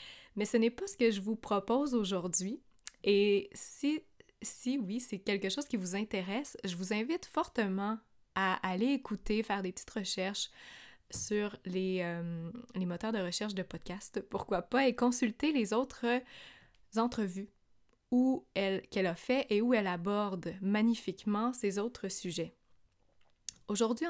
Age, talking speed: 20-39, 150 wpm